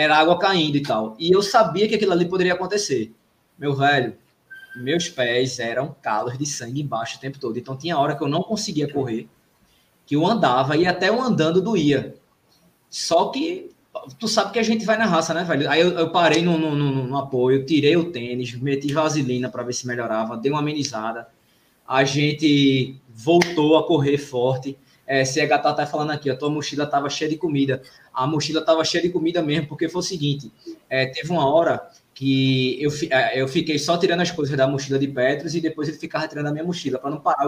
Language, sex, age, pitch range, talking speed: Portuguese, male, 20-39, 135-170 Hz, 215 wpm